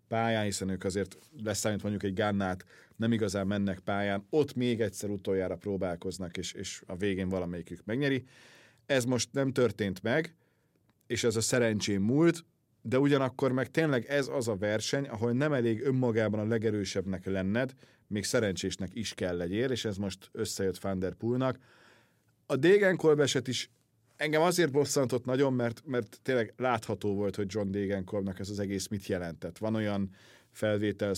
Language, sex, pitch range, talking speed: Hungarian, male, 100-125 Hz, 155 wpm